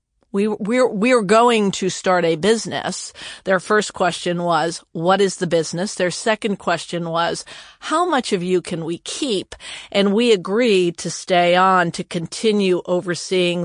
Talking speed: 160 wpm